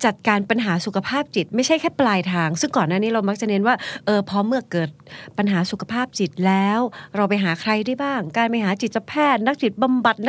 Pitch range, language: 170-230 Hz, Thai